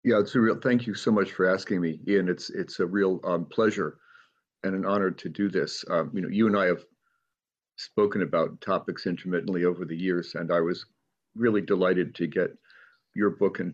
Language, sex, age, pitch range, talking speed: English, male, 50-69, 95-115 Hz, 210 wpm